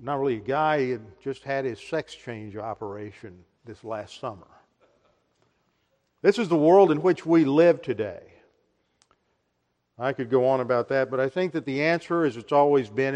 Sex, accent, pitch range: male, American, 130-165 Hz